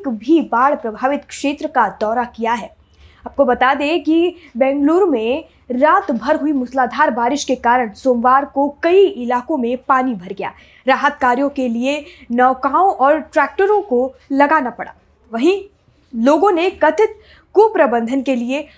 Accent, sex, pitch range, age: native, female, 245-305 Hz, 20-39